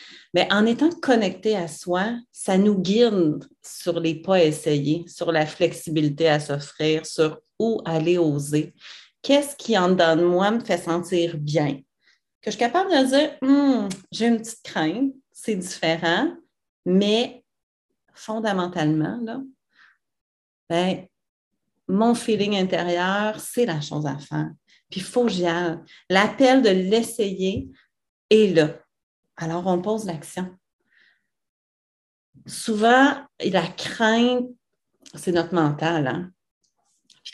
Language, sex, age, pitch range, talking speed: French, female, 40-59, 165-220 Hz, 130 wpm